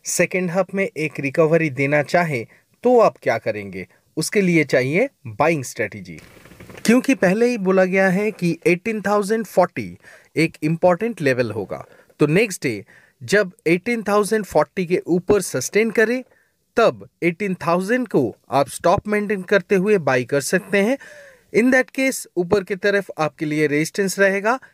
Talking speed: 145 wpm